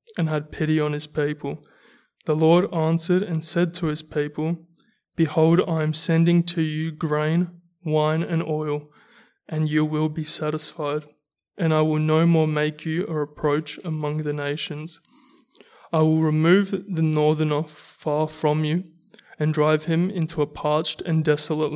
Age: 20-39